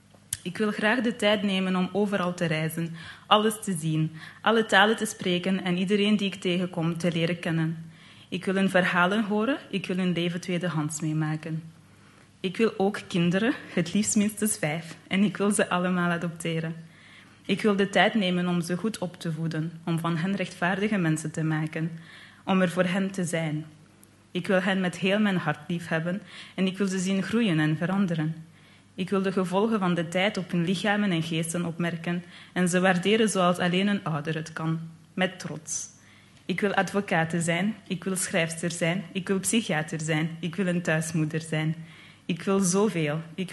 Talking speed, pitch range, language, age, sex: 185 wpm, 160-195 Hz, Dutch, 20-39, female